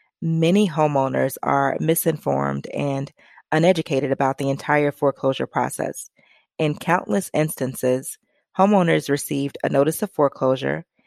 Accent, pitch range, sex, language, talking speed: American, 135-160 Hz, female, English, 110 wpm